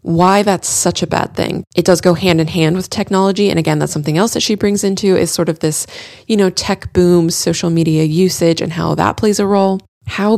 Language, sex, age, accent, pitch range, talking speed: English, female, 20-39, American, 160-185 Hz, 235 wpm